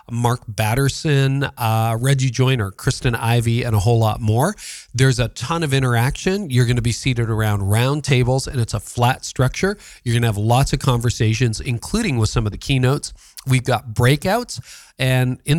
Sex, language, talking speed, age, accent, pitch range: male, English, 185 wpm, 40-59, American, 115-140 Hz